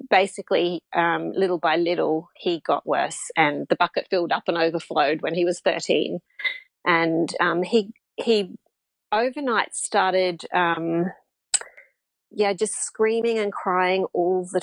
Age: 40-59